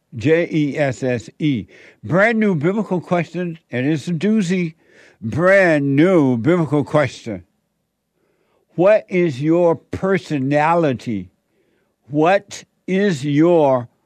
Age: 60-79